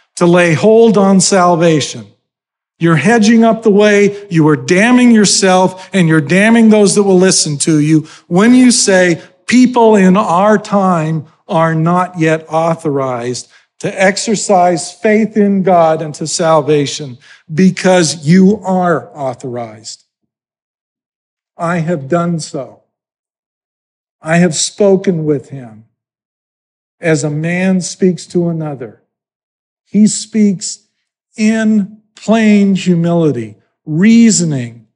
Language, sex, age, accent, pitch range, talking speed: English, male, 50-69, American, 155-200 Hz, 115 wpm